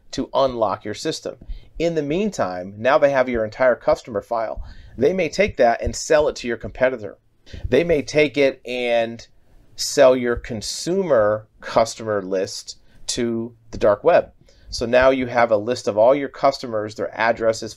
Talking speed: 170 wpm